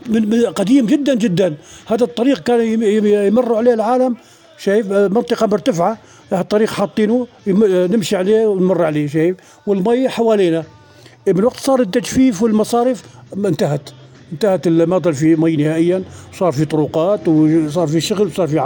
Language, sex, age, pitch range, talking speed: Arabic, male, 50-69, 185-240 Hz, 140 wpm